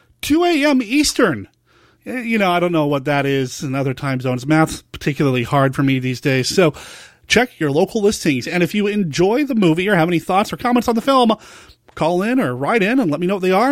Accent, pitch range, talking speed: American, 145-205 Hz, 235 wpm